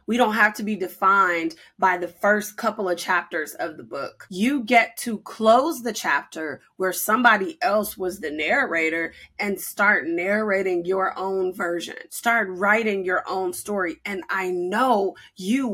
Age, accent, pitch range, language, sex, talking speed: 20-39, American, 190-255 Hz, English, female, 160 wpm